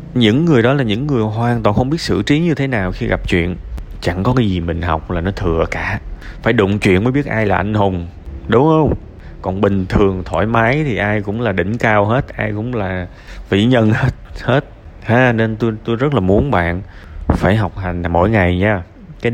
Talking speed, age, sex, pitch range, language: 225 wpm, 20-39, male, 85-110 Hz, Vietnamese